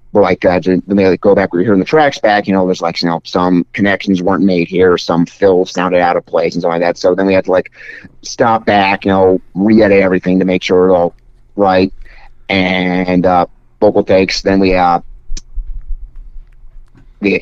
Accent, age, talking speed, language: American, 30-49, 205 wpm, English